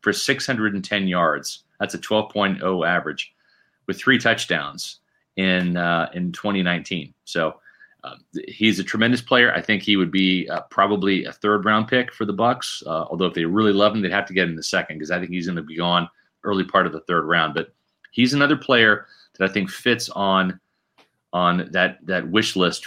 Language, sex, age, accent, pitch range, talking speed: English, male, 30-49, American, 90-110 Hz, 200 wpm